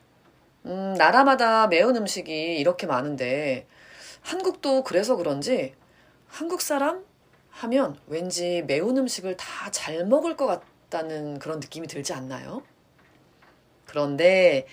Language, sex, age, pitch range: Korean, female, 30-49, 175-275 Hz